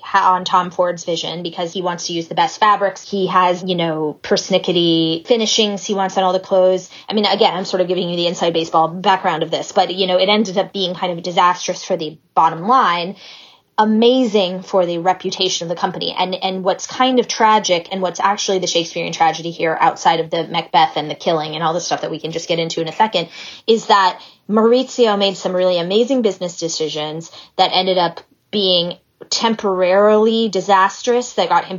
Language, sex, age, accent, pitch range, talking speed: English, female, 20-39, American, 175-210 Hz, 210 wpm